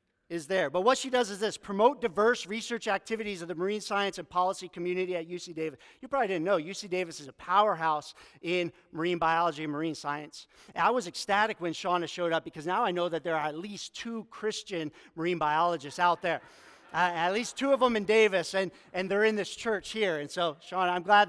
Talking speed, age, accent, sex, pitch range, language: 225 wpm, 40-59, American, male, 180-230 Hz, English